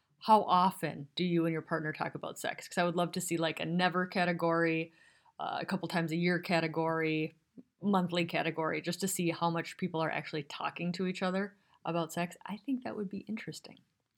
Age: 30-49